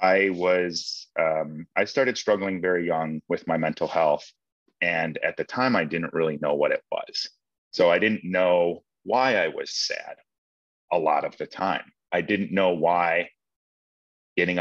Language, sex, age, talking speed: English, male, 30-49, 170 wpm